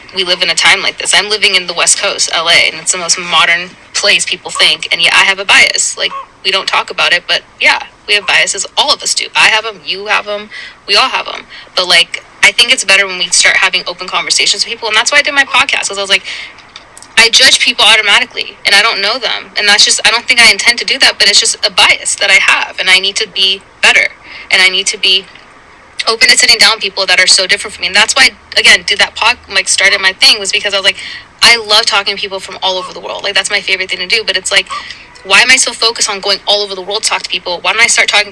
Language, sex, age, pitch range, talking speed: English, female, 20-39, 190-230 Hz, 290 wpm